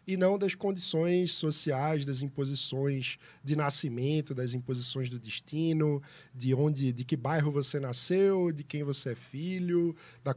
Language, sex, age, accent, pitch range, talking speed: Portuguese, male, 20-39, Brazilian, 140-180 Hz, 150 wpm